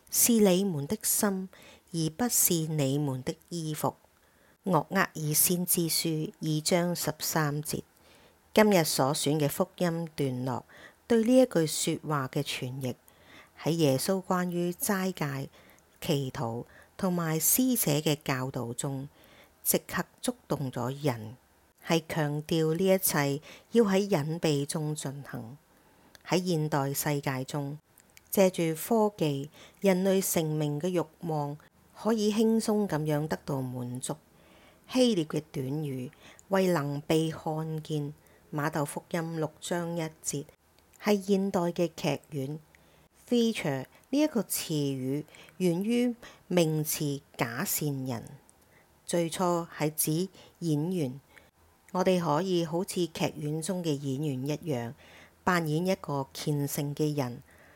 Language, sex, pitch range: English, female, 145-180 Hz